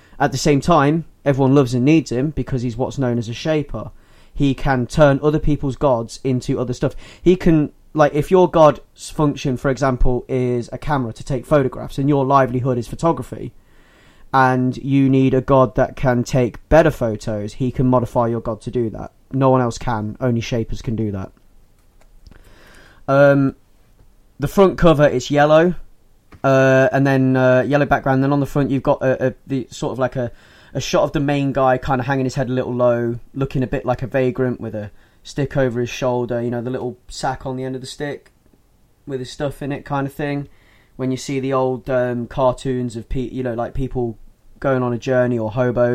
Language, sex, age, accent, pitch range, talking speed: English, male, 20-39, British, 120-140 Hz, 215 wpm